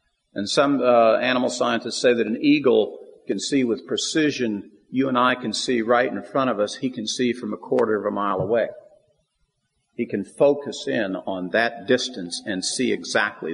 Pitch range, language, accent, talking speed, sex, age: 115-155 Hz, English, American, 190 wpm, male, 50-69